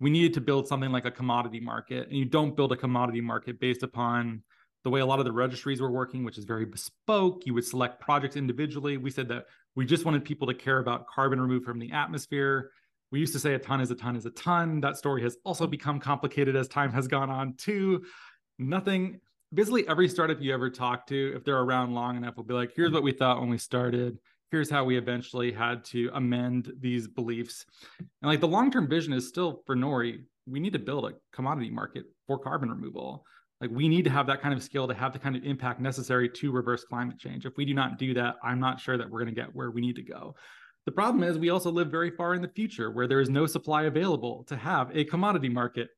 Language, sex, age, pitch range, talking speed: English, male, 30-49, 125-150 Hz, 245 wpm